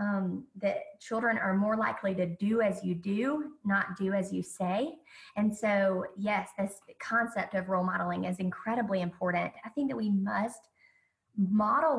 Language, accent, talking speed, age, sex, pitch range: English, American, 165 wpm, 20-39, female, 195-250 Hz